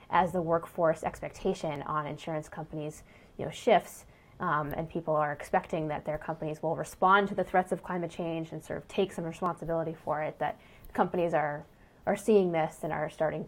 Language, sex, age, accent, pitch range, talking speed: English, female, 20-39, American, 160-195 Hz, 190 wpm